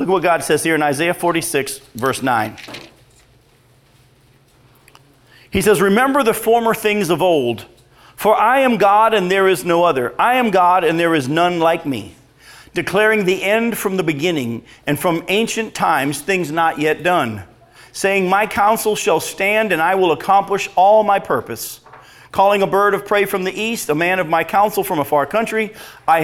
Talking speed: 185 wpm